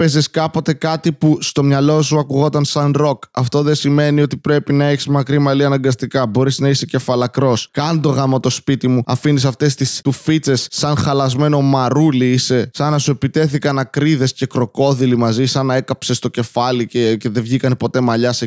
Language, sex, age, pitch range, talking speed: Greek, male, 20-39, 125-155 Hz, 190 wpm